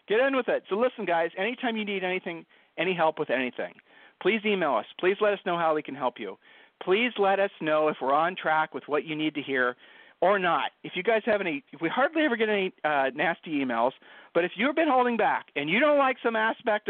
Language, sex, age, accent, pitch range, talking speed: English, male, 40-59, American, 150-195 Hz, 245 wpm